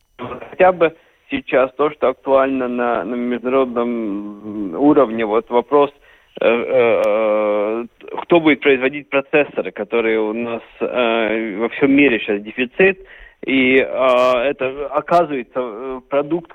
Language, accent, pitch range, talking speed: Russian, native, 120-145 Hz, 115 wpm